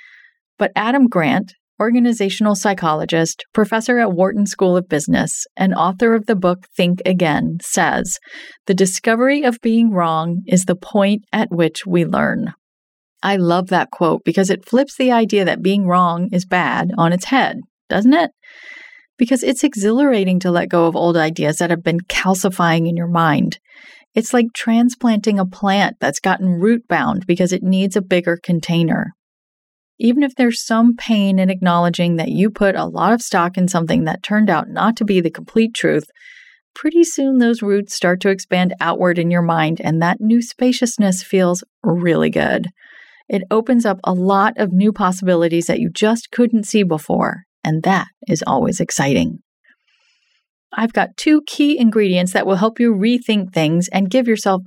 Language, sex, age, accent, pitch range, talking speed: English, female, 30-49, American, 180-235 Hz, 170 wpm